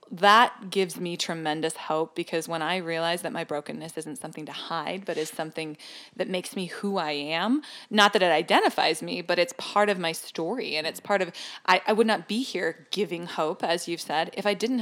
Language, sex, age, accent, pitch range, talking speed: English, female, 20-39, American, 165-200 Hz, 220 wpm